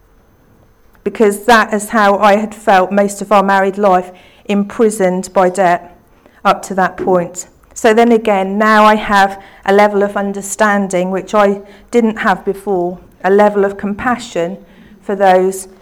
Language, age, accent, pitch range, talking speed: English, 40-59, British, 185-210 Hz, 150 wpm